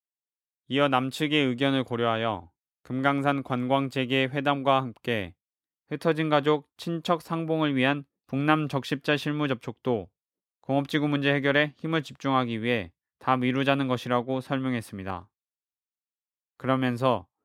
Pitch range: 125-150 Hz